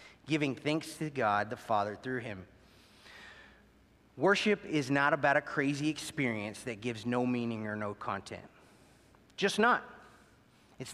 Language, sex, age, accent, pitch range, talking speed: English, male, 30-49, American, 125-180 Hz, 135 wpm